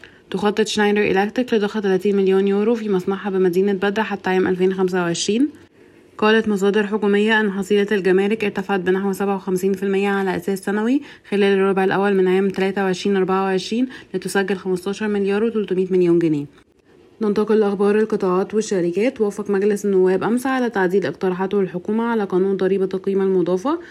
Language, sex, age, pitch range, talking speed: Arabic, female, 20-39, 185-200 Hz, 140 wpm